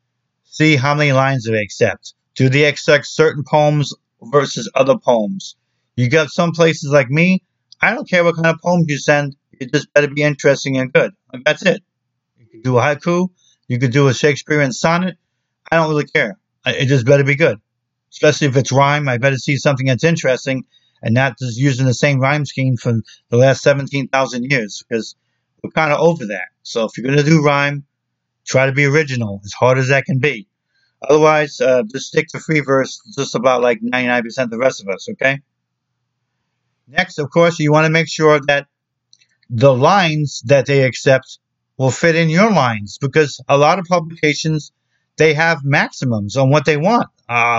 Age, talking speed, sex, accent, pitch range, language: 50-69, 195 wpm, male, American, 130-150 Hz, English